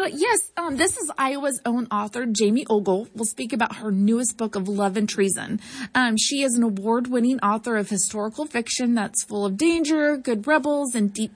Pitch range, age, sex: 210-265 Hz, 30-49, female